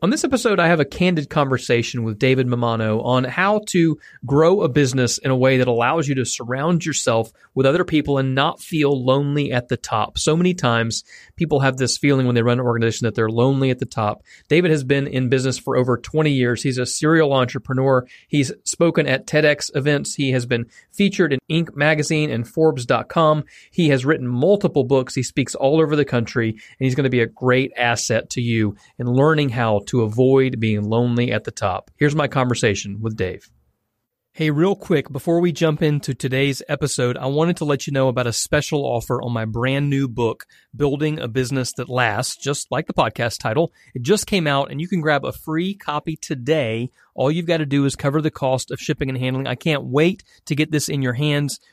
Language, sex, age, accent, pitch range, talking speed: English, male, 40-59, American, 125-155 Hz, 215 wpm